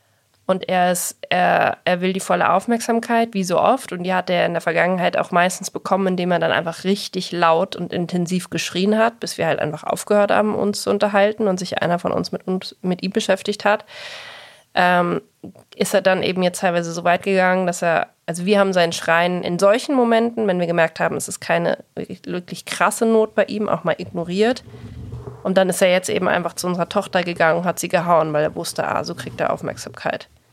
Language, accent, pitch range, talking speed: German, German, 170-205 Hz, 215 wpm